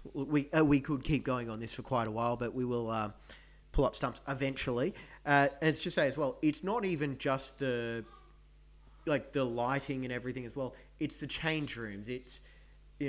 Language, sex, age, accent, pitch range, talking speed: English, male, 30-49, Australian, 125-145 Hz, 205 wpm